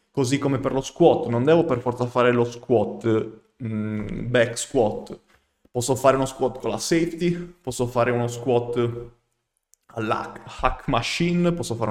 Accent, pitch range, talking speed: native, 120-150 Hz, 155 wpm